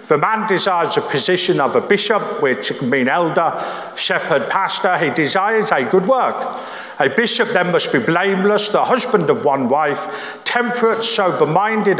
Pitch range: 180-230 Hz